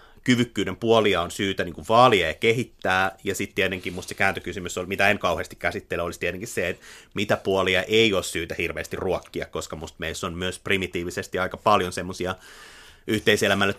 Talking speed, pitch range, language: 180 wpm, 95-115 Hz, Finnish